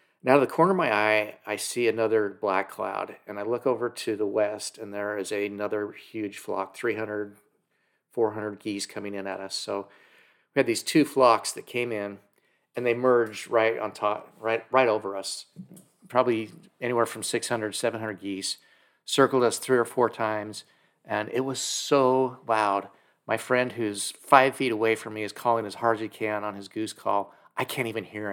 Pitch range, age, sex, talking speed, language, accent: 100-120 Hz, 40-59, male, 195 wpm, English, American